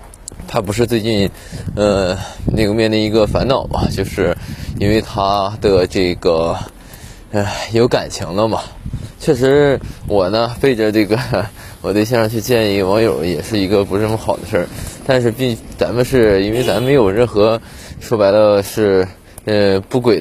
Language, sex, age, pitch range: Chinese, male, 20-39, 95-115 Hz